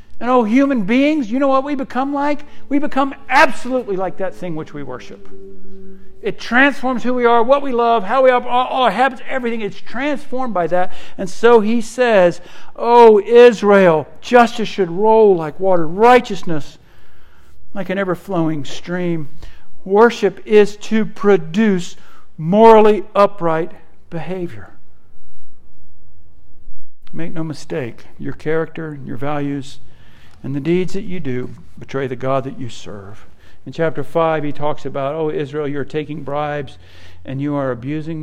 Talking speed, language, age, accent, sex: 150 wpm, English, 60-79, American, male